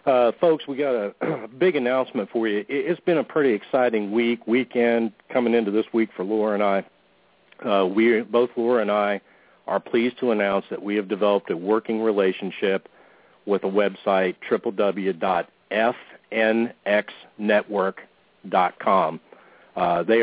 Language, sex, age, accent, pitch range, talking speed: English, male, 50-69, American, 100-115 Hz, 140 wpm